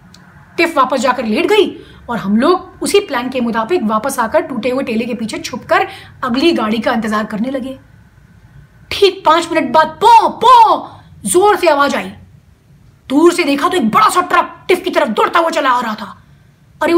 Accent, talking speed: native, 105 wpm